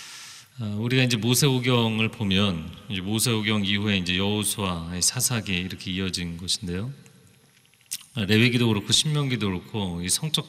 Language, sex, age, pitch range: Korean, male, 40-59, 100-130 Hz